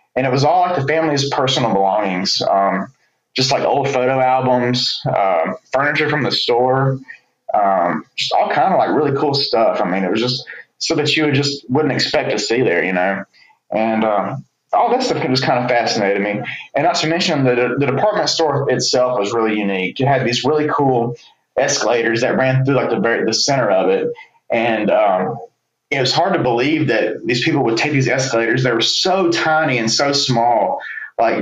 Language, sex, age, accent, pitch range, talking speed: English, male, 20-39, American, 120-150 Hz, 200 wpm